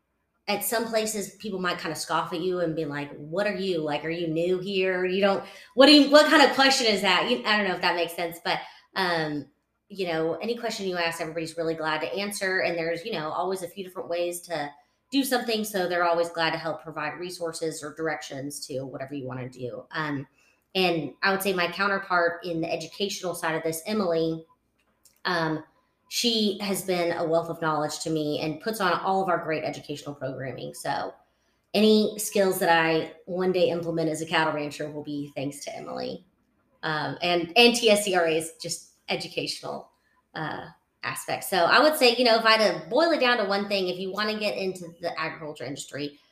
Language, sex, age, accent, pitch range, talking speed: English, female, 30-49, American, 160-200 Hz, 210 wpm